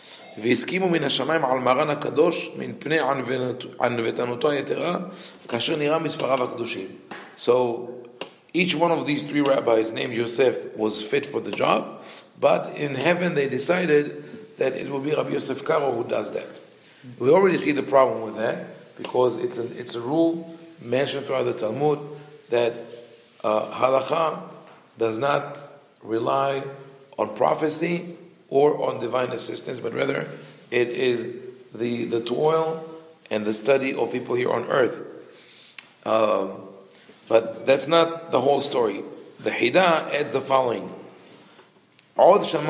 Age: 40-59